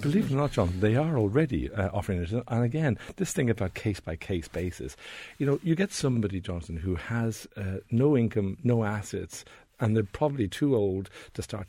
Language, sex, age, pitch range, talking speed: English, male, 60-79, 90-115 Hz, 195 wpm